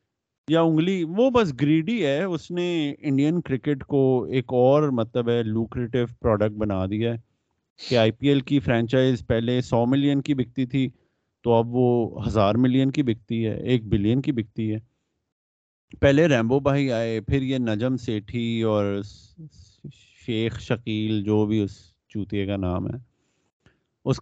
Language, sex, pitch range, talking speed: Urdu, male, 110-150 Hz, 155 wpm